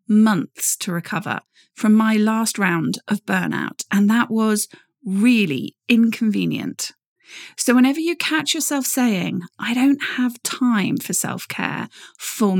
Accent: British